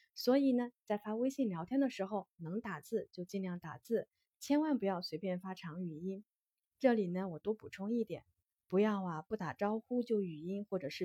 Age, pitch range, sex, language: 20-39, 175-245 Hz, female, Chinese